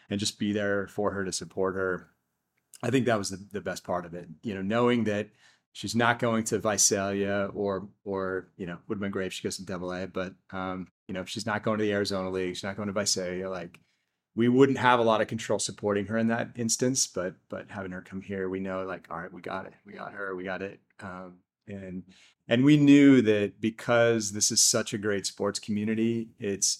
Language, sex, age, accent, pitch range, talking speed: English, male, 30-49, American, 95-115 Hz, 235 wpm